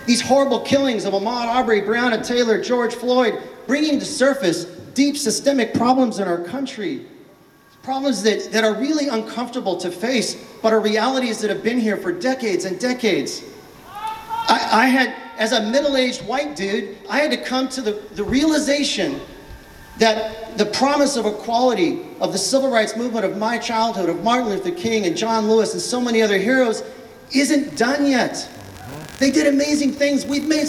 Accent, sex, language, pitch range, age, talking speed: American, male, English, 220-270 Hz, 40-59, 170 wpm